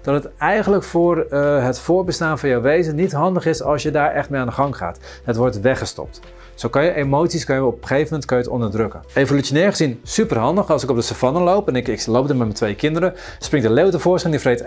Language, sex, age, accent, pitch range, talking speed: Dutch, male, 40-59, Dutch, 120-170 Hz, 265 wpm